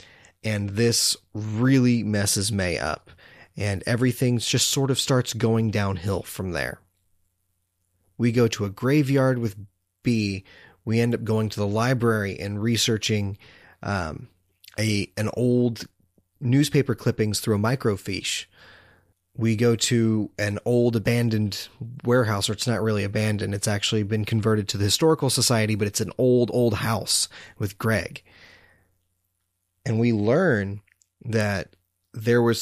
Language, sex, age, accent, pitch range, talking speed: English, male, 30-49, American, 95-115 Hz, 140 wpm